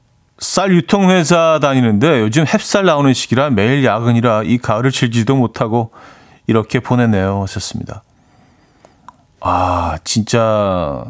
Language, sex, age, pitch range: Korean, male, 40-59, 100-140 Hz